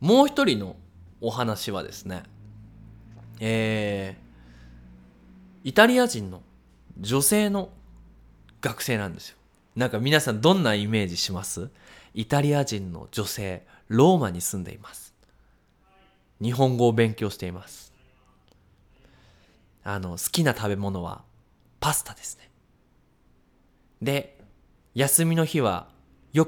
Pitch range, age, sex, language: 95-140 Hz, 20-39, male, Japanese